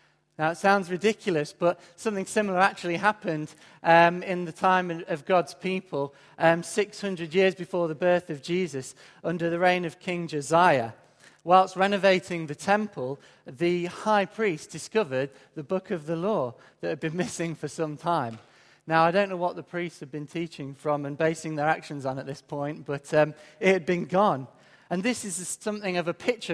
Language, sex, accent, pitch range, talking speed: English, male, British, 160-195 Hz, 185 wpm